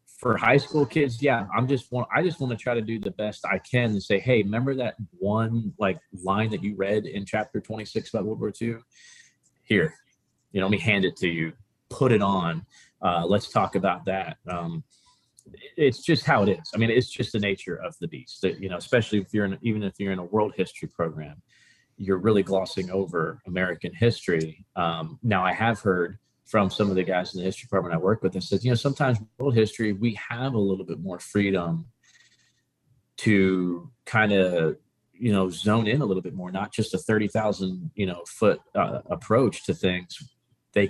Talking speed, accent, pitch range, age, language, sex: 210 wpm, American, 95-115 Hz, 30-49, English, male